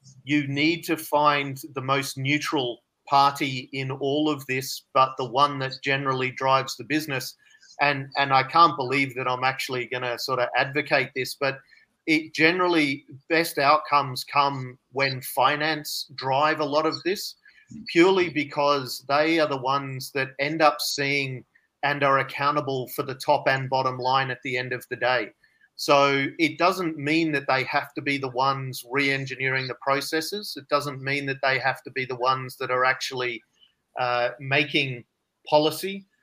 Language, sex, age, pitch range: Thai, male, 40-59, 130-150 Hz